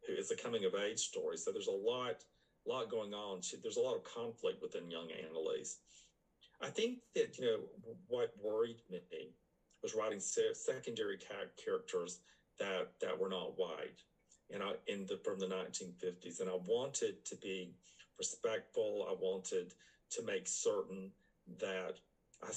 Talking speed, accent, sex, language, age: 155 wpm, American, male, English, 50-69